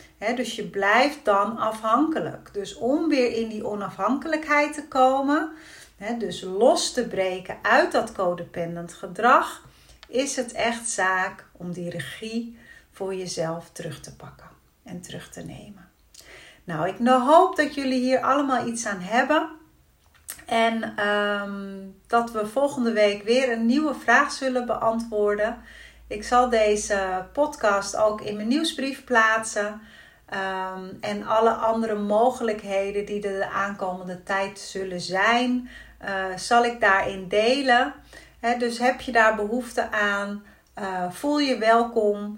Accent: Dutch